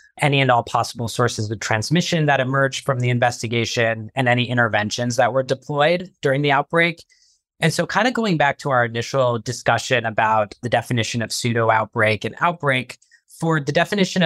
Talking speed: 175 wpm